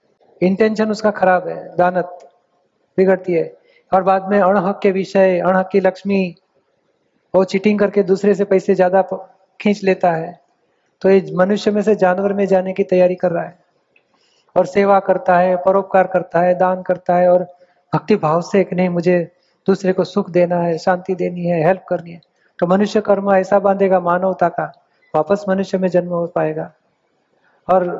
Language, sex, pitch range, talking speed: Hindi, male, 180-205 Hz, 170 wpm